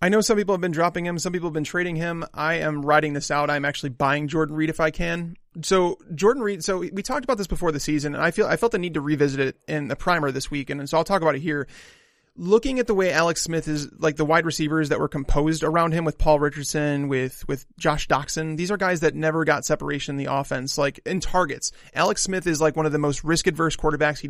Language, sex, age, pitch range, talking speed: English, male, 30-49, 150-185 Hz, 265 wpm